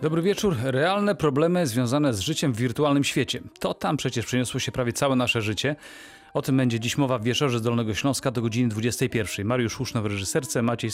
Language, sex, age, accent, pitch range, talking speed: Polish, male, 40-59, native, 110-140 Hz, 205 wpm